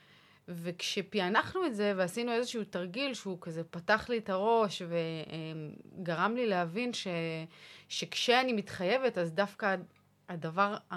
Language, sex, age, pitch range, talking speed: Hebrew, female, 30-49, 185-220 Hz, 115 wpm